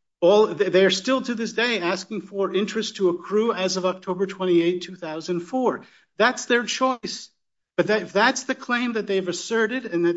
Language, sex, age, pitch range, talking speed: English, male, 50-69, 175-215 Hz, 170 wpm